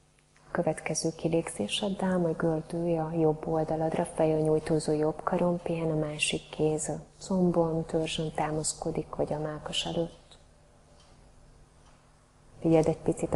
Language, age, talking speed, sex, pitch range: Hungarian, 30-49, 125 wpm, female, 155-170 Hz